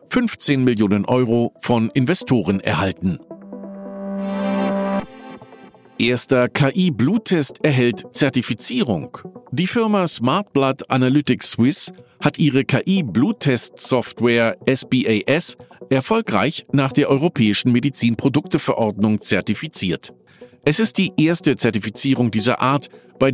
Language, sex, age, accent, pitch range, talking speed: German, male, 50-69, German, 120-175 Hz, 85 wpm